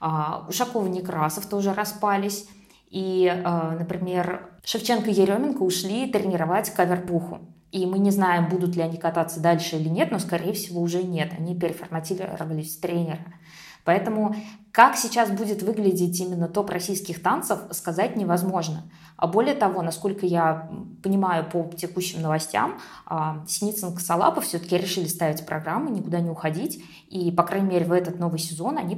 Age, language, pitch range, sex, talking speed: 20-39, Russian, 165-195 Hz, female, 145 wpm